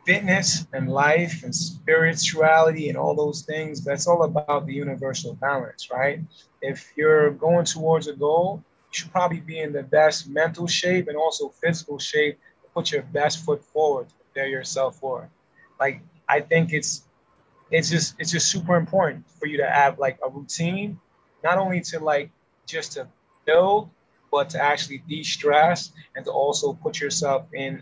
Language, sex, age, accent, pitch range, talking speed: English, male, 20-39, American, 145-170 Hz, 175 wpm